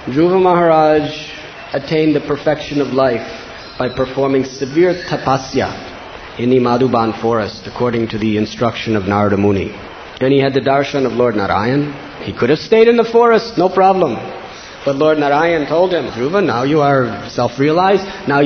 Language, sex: English, male